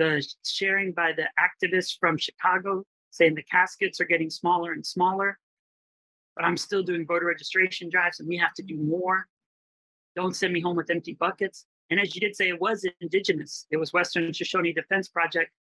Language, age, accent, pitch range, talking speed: English, 40-59, American, 165-195 Hz, 190 wpm